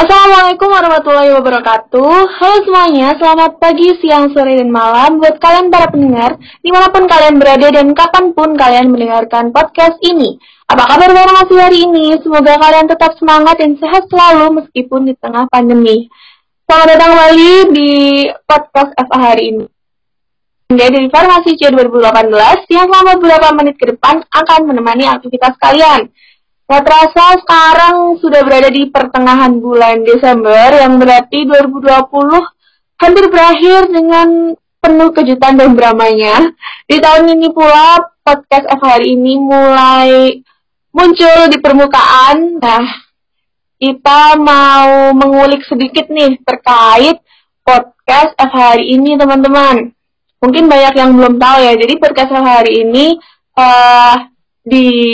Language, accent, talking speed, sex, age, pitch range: Indonesian, native, 125 wpm, female, 20-39, 255-330 Hz